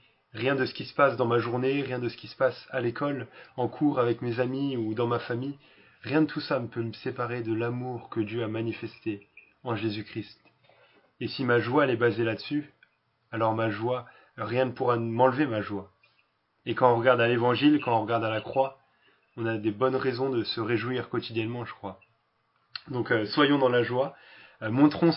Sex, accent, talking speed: male, French, 210 wpm